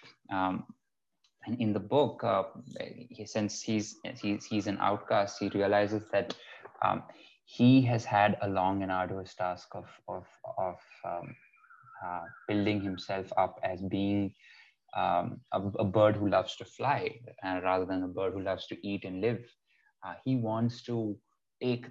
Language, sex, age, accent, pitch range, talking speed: English, male, 20-39, Indian, 95-105 Hz, 160 wpm